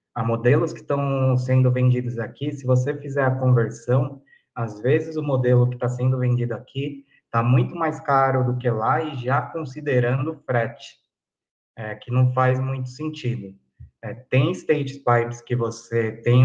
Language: Portuguese